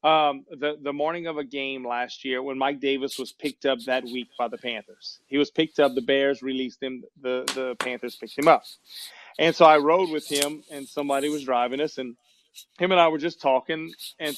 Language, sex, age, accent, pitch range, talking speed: English, male, 30-49, American, 135-170 Hz, 220 wpm